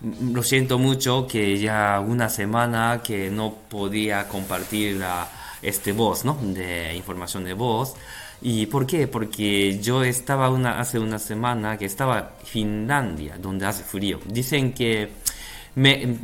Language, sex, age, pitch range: Japanese, male, 20-39, 100-130 Hz